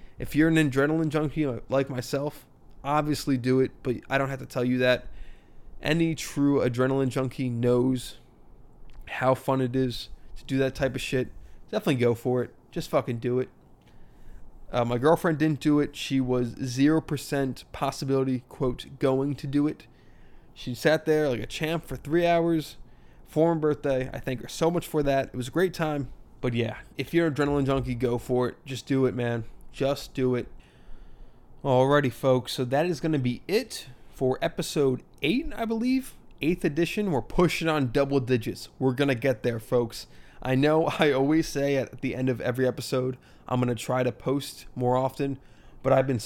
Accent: American